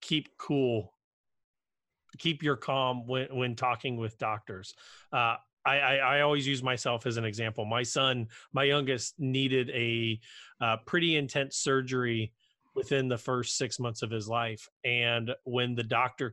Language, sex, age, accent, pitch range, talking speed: English, male, 30-49, American, 120-140 Hz, 155 wpm